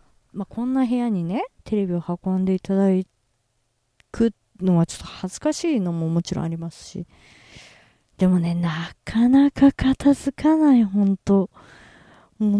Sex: female